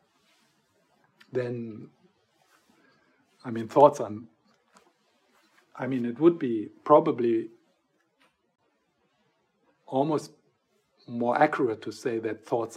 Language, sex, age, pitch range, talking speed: English, male, 60-79, 115-150 Hz, 85 wpm